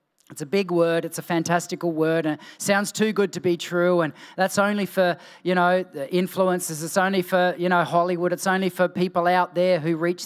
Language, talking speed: English, 215 wpm